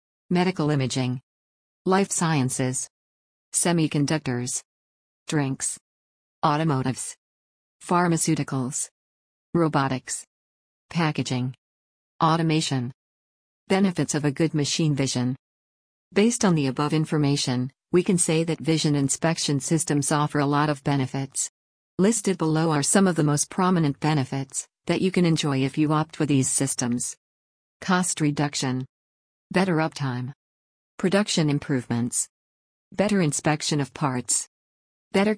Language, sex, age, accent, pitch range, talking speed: English, female, 50-69, American, 125-165 Hz, 110 wpm